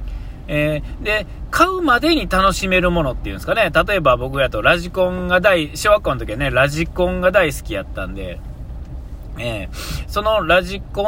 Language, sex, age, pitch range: Japanese, male, 40-59, 130-200 Hz